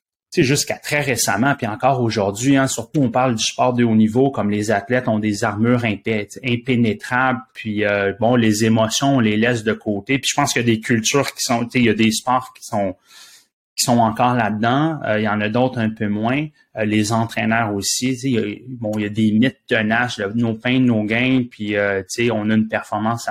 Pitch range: 110-135 Hz